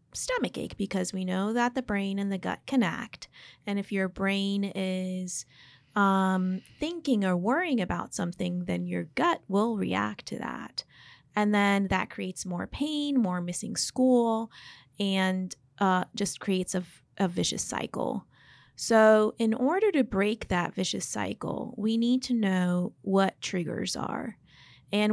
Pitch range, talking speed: 180-225 Hz, 150 wpm